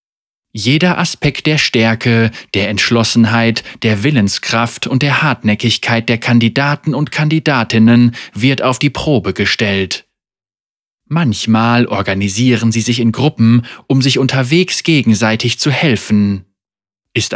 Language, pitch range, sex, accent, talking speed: German, 110-135 Hz, male, German, 115 wpm